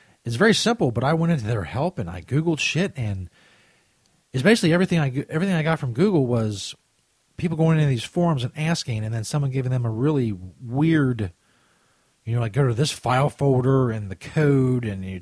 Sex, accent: male, American